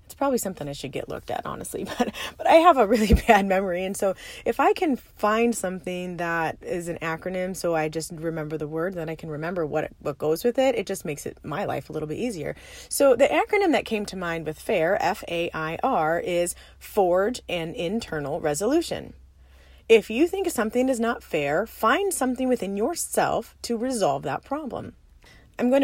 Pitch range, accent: 170-245 Hz, American